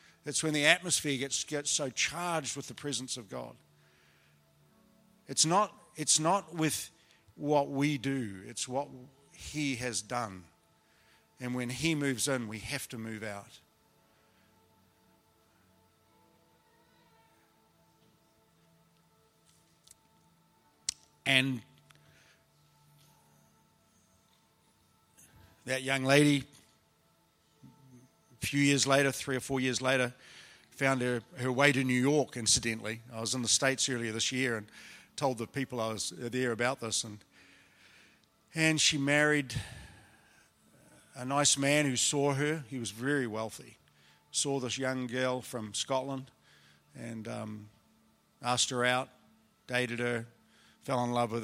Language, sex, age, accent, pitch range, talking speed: English, male, 50-69, Australian, 110-140 Hz, 120 wpm